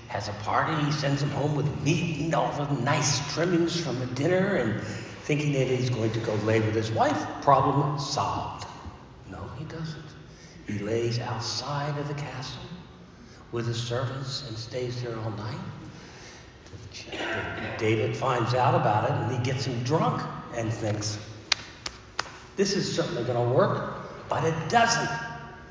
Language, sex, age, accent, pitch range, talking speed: English, male, 60-79, American, 110-145 Hz, 160 wpm